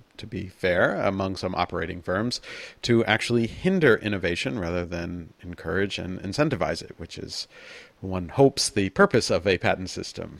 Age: 40-59